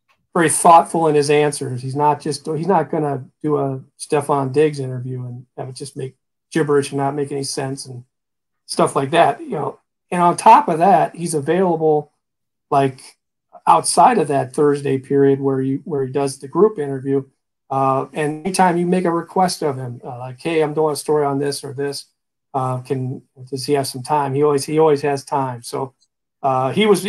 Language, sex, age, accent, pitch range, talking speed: English, male, 40-59, American, 135-155 Hz, 205 wpm